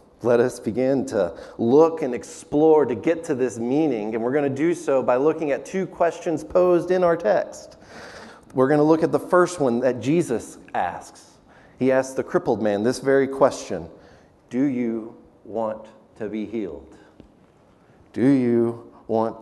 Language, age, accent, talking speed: English, 30-49, American, 170 wpm